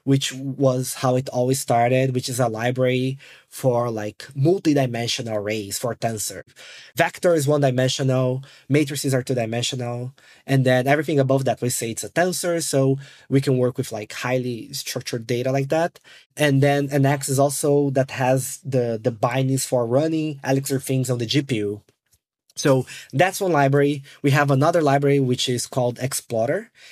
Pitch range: 125-150 Hz